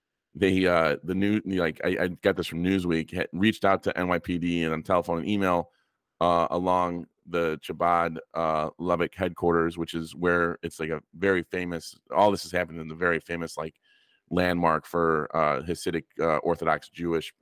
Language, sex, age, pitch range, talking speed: English, male, 30-49, 80-90 Hz, 180 wpm